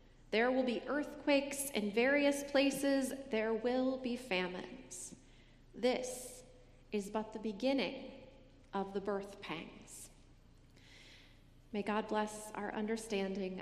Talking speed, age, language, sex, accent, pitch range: 110 wpm, 30-49, English, female, American, 190-250 Hz